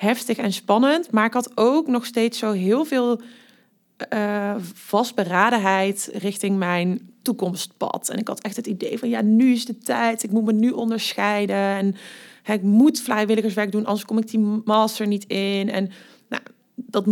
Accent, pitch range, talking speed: Dutch, 190-225 Hz, 170 wpm